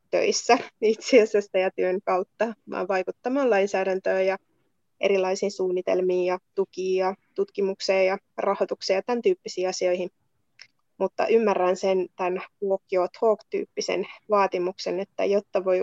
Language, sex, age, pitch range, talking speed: Finnish, female, 20-39, 185-215 Hz, 120 wpm